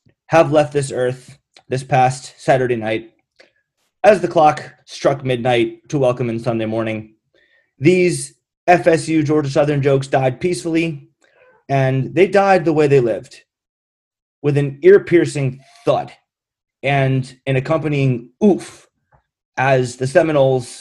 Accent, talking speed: American, 125 wpm